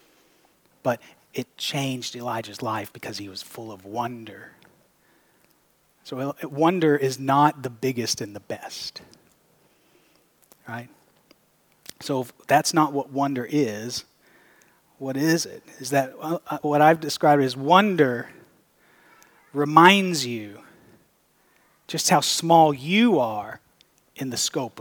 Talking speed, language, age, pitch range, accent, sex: 120 wpm, English, 30-49, 140-210 Hz, American, male